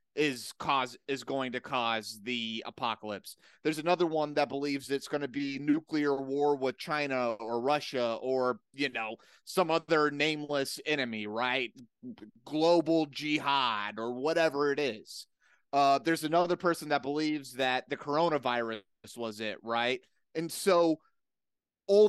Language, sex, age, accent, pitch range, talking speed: English, male, 30-49, American, 130-175 Hz, 140 wpm